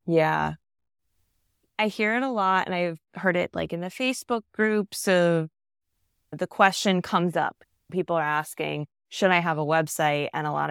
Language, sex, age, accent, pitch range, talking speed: English, female, 20-39, American, 165-220 Hz, 175 wpm